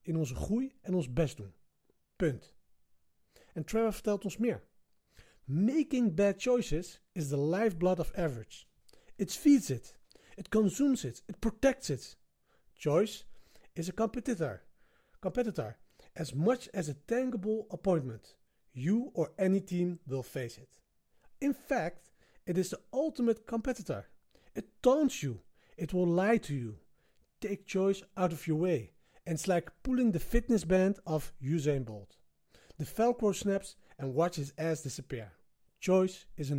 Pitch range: 140-220 Hz